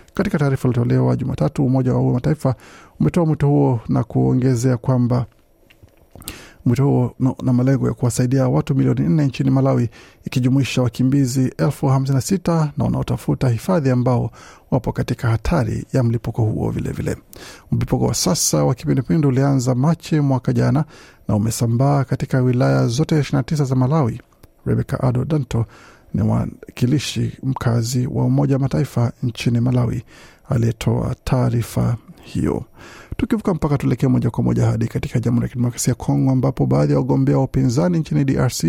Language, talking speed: Swahili, 145 wpm